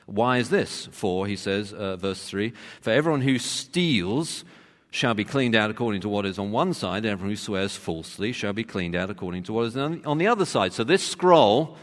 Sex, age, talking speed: male, 40-59, 225 wpm